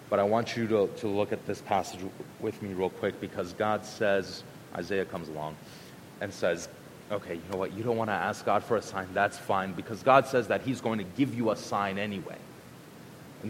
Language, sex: English, male